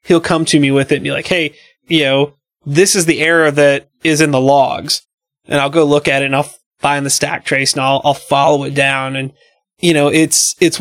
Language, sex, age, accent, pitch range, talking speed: English, male, 20-39, American, 140-180 Hz, 245 wpm